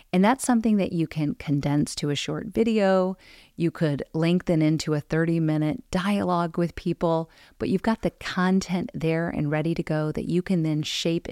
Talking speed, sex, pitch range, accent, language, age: 185 wpm, female, 155-205 Hz, American, English, 40-59